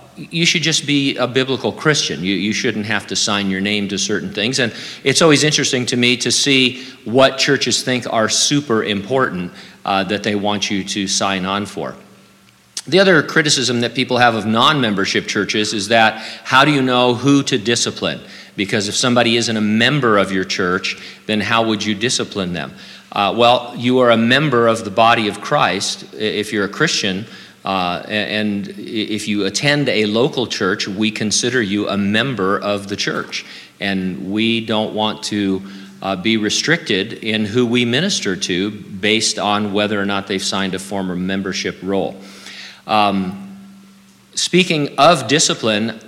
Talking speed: 175 wpm